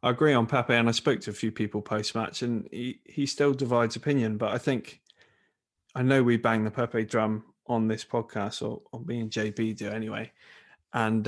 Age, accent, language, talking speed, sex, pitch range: 20-39, British, English, 205 wpm, male, 110-120 Hz